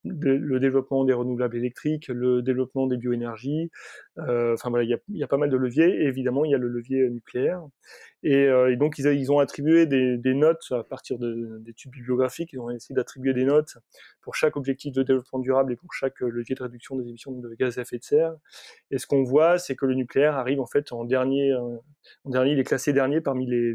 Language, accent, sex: French, French, male